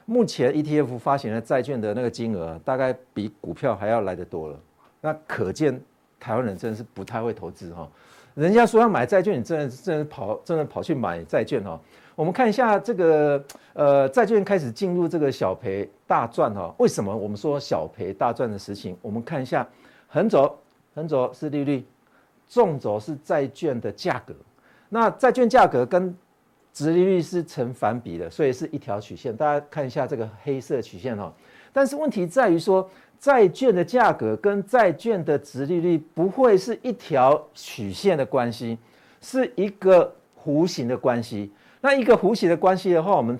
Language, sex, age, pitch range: Chinese, male, 50-69, 125-200 Hz